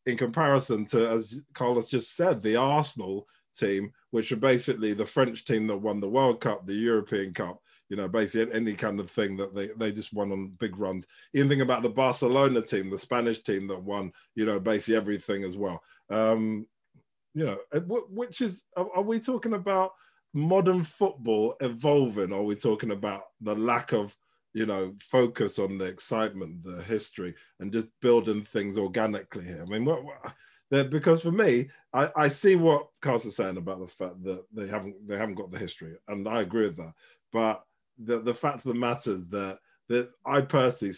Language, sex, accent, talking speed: English, male, British, 190 wpm